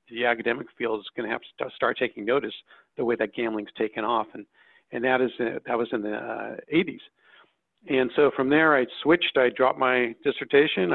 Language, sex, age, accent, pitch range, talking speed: English, male, 50-69, American, 110-125 Hz, 205 wpm